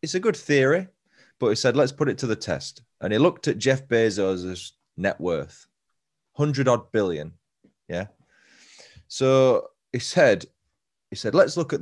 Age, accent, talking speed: 20-39, British, 170 wpm